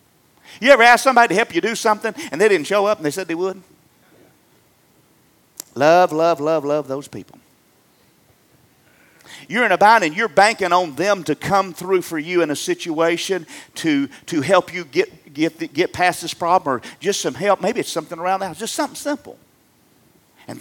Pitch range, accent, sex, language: 165-230 Hz, American, male, English